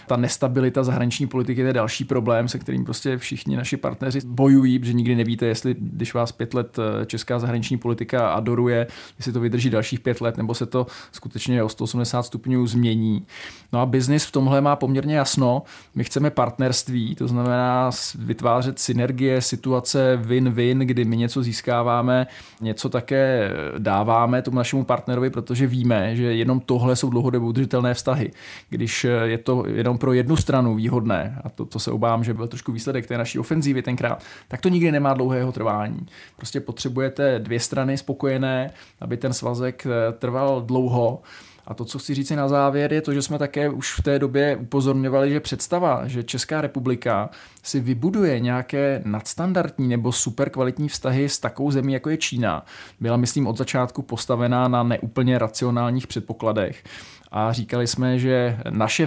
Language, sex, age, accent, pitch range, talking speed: Czech, male, 20-39, native, 120-135 Hz, 165 wpm